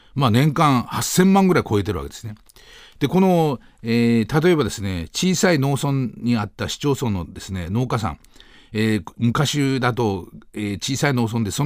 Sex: male